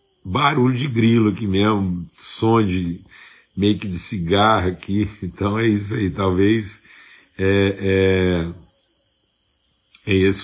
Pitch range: 90-110 Hz